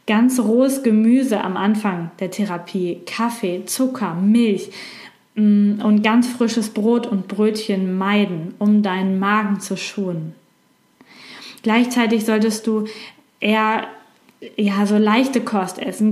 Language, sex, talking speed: German, female, 115 wpm